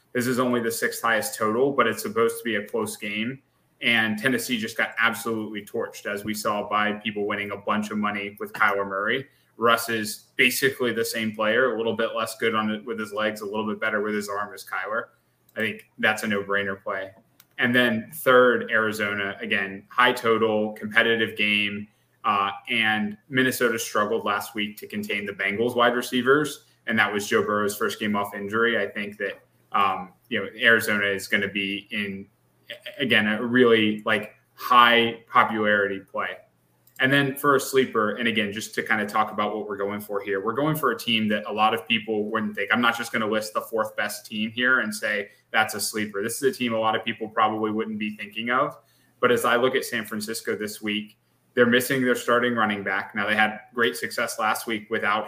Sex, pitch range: male, 105-120 Hz